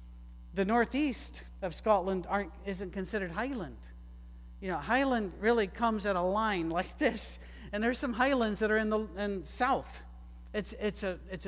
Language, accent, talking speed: English, American, 165 wpm